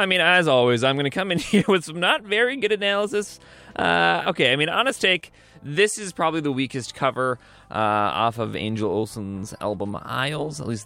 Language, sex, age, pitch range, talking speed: English, male, 20-39, 110-175 Hz, 205 wpm